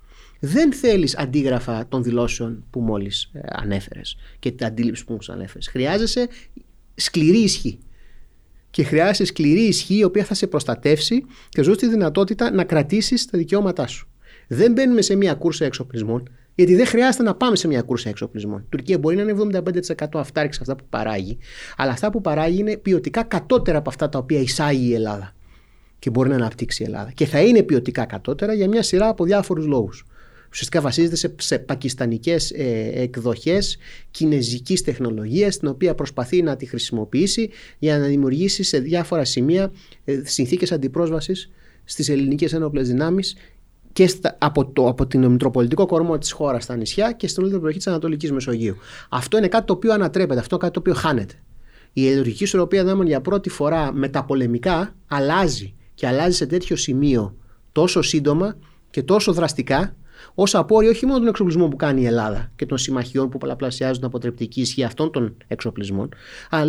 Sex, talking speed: male, 175 wpm